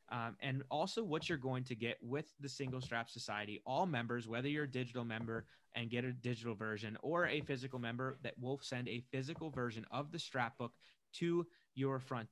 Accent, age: American, 20-39